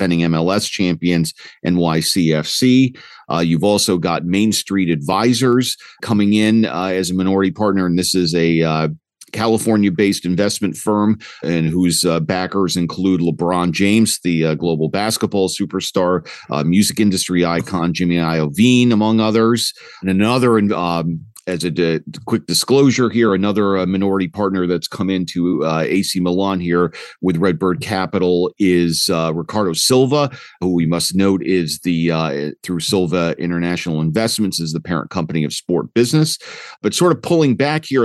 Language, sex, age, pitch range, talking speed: English, male, 40-59, 85-110 Hz, 155 wpm